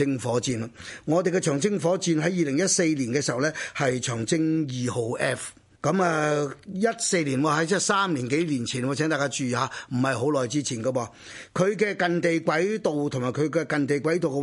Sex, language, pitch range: male, Chinese, 130-165 Hz